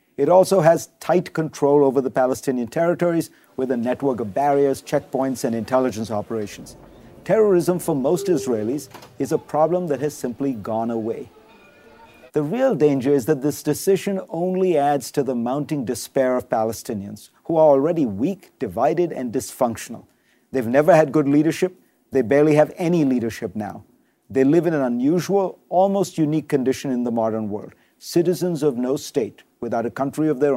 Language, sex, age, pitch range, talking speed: English, male, 50-69, 130-170 Hz, 165 wpm